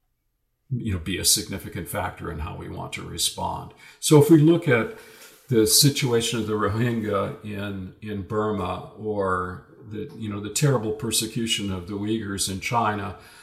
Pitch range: 105-135 Hz